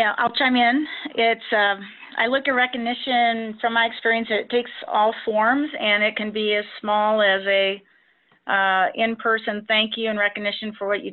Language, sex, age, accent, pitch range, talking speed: English, female, 40-59, American, 185-220 Hz, 185 wpm